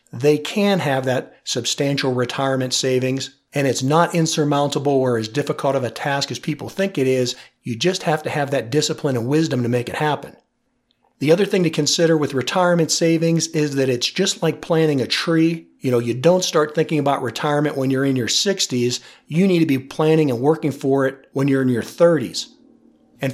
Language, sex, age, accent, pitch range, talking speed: English, male, 50-69, American, 135-165 Hz, 205 wpm